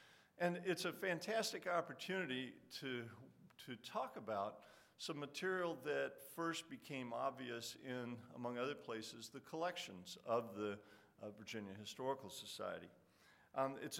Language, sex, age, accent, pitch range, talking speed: English, male, 50-69, American, 105-135 Hz, 125 wpm